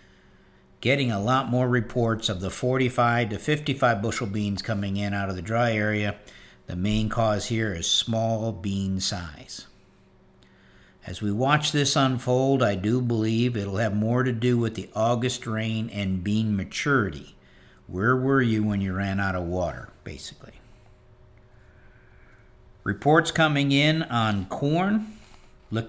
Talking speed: 145 wpm